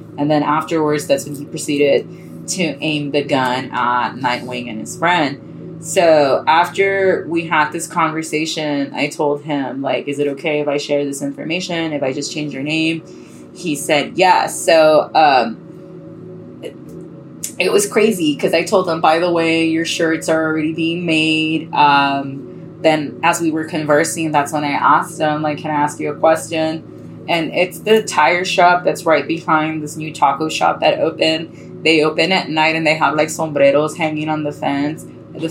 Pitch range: 150-165 Hz